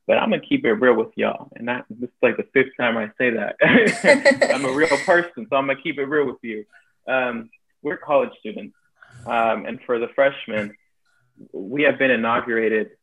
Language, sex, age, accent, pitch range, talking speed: English, male, 20-39, American, 110-135 Hz, 320 wpm